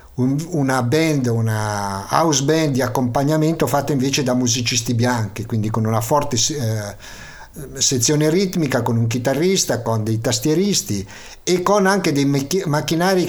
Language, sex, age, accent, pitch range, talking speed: Italian, male, 50-69, native, 120-150 Hz, 130 wpm